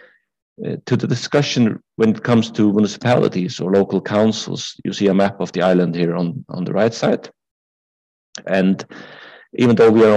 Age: 50-69